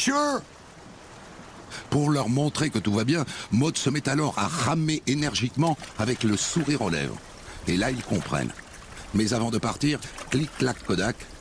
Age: 60-79